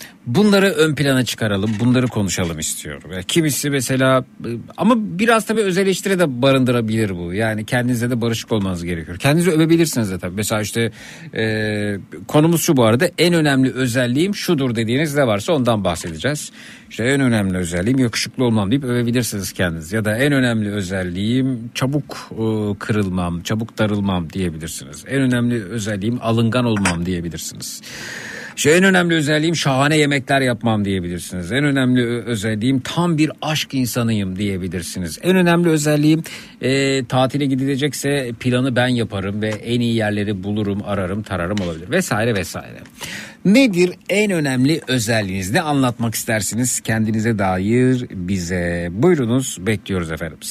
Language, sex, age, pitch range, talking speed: Turkish, male, 50-69, 105-140 Hz, 135 wpm